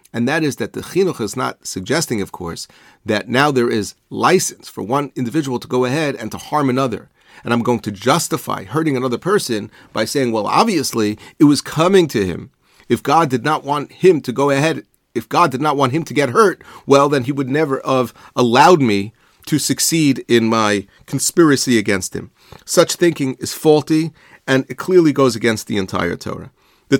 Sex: male